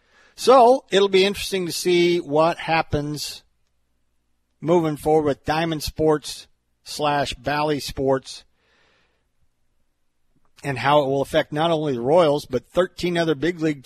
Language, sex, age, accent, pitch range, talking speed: English, male, 50-69, American, 125-155 Hz, 130 wpm